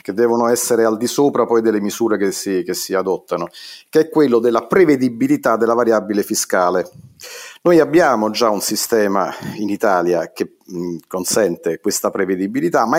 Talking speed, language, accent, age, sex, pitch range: 155 wpm, Italian, native, 40-59, male, 110-175 Hz